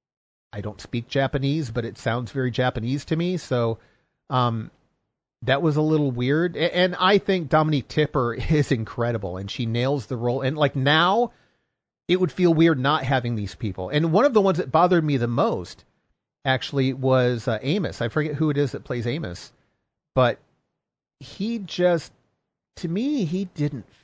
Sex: male